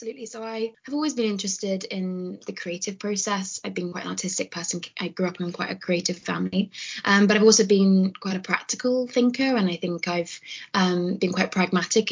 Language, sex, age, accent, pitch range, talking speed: English, female, 20-39, British, 180-210 Hz, 210 wpm